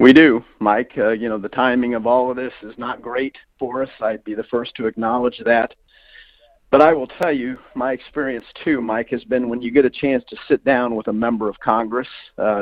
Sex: male